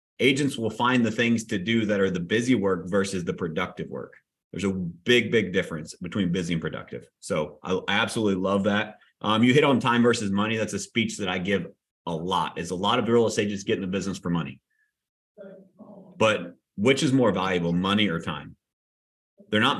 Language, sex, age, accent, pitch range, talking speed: English, male, 30-49, American, 95-130 Hz, 210 wpm